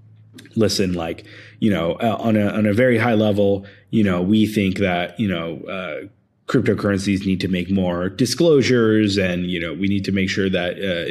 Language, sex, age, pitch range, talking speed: English, male, 20-39, 95-110 Hz, 195 wpm